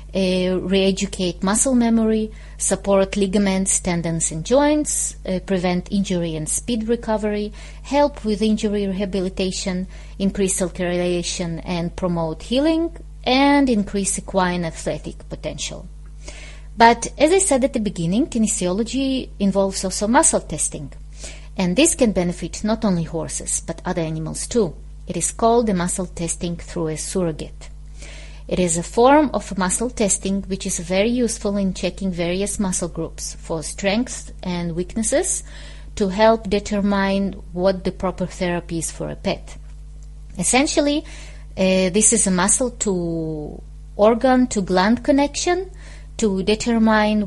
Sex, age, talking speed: female, 30-49, 135 wpm